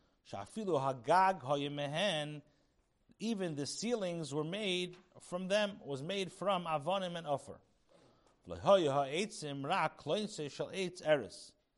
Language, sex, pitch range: English, male, 135-185 Hz